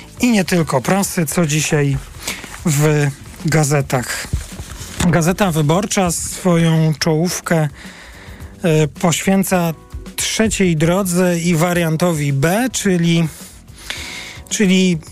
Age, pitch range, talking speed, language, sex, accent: 40-59, 150-180 Hz, 80 wpm, Polish, male, native